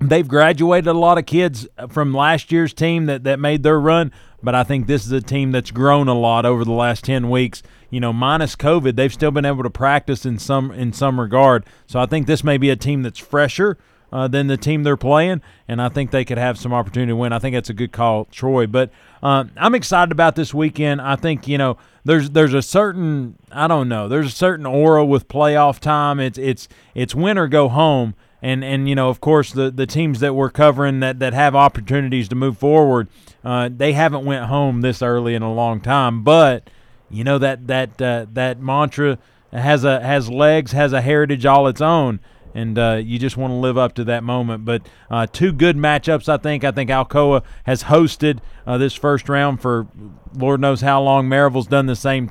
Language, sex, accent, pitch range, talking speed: English, male, American, 125-150 Hz, 225 wpm